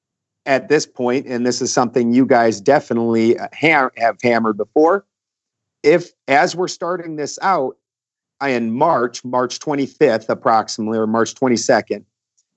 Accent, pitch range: American, 120-145 Hz